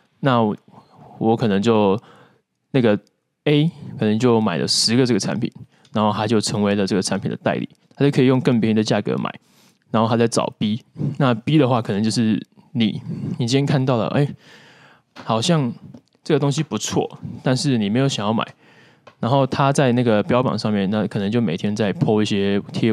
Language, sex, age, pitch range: Chinese, male, 20-39, 105-135 Hz